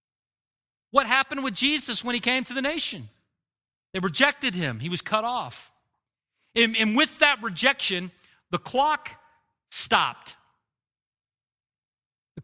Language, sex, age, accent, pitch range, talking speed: English, male, 40-59, American, 175-245 Hz, 125 wpm